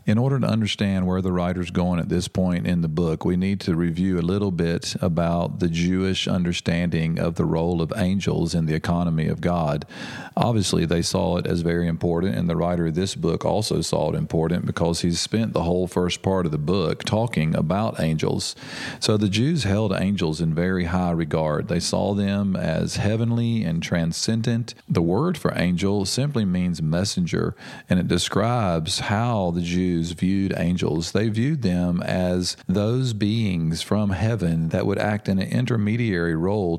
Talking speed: 180 wpm